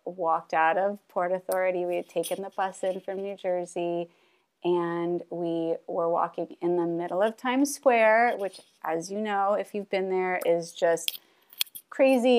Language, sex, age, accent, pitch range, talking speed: English, female, 30-49, American, 175-230 Hz, 170 wpm